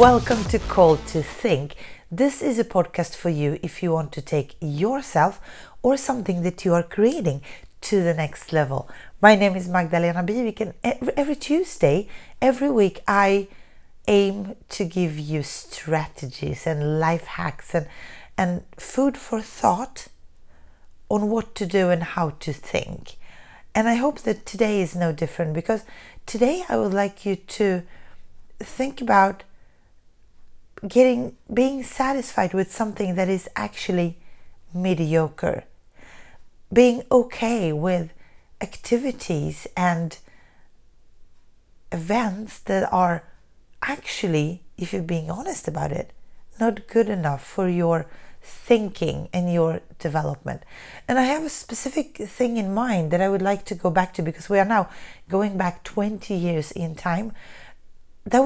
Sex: female